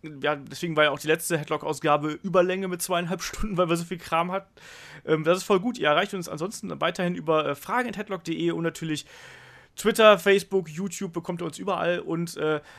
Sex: male